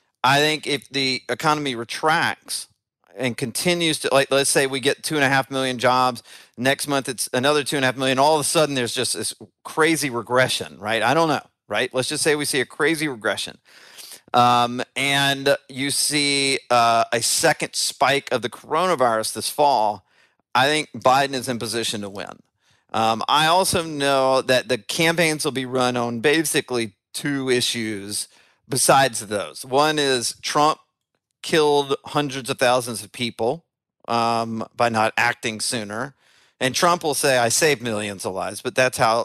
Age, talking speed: 40-59, 175 wpm